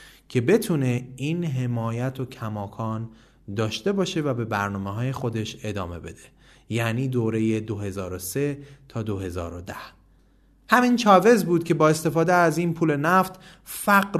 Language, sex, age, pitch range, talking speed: Persian, male, 30-49, 110-160 Hz, 130 wpm